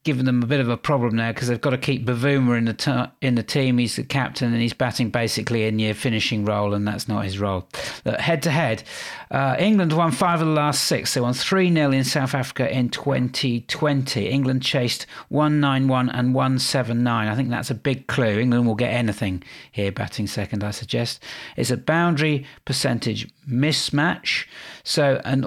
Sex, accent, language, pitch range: male, British, English, 110-135 Hz